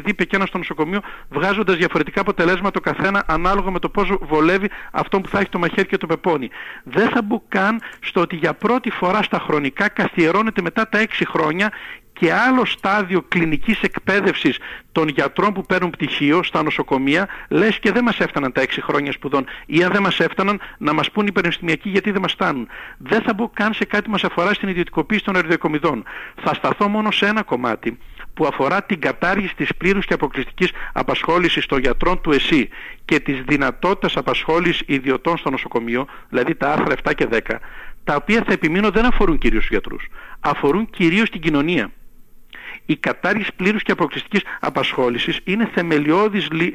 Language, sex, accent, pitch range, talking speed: Greek, male, native, 155-205 Hz, 180 wpm